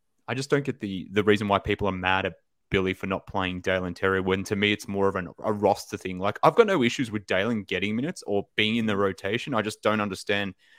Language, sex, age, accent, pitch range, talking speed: English, male, 20-39, Australian, 100-120 Hz, 255 wpm